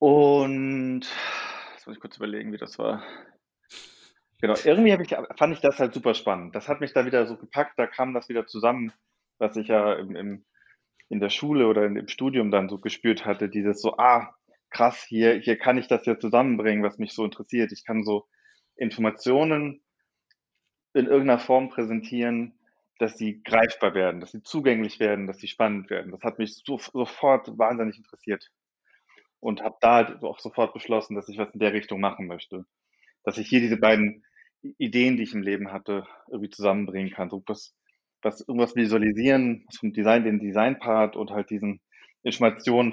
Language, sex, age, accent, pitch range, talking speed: German, male, 20-39, German, 105-125 Hz, 180 wpm